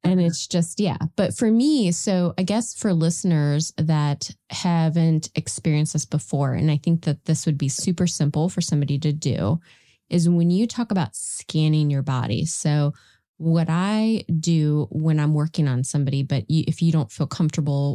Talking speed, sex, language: 175 wpm, female, English